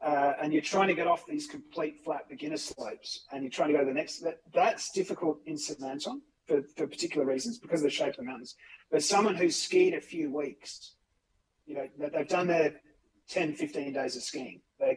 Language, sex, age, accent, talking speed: English, male, 40-59, Australian, 225 wpm